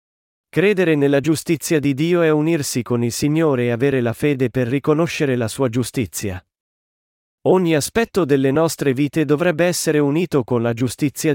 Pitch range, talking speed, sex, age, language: 120-165 Hz, 160 wpm, male, 40-59, Italian